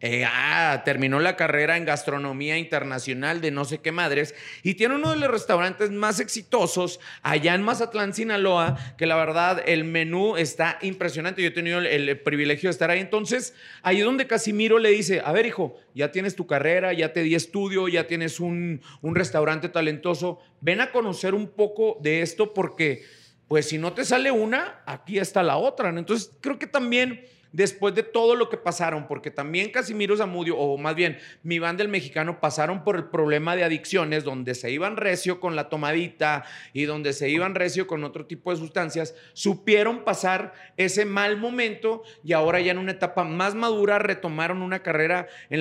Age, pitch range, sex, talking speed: 40-59, 160-195 Hz, male, 190 wpm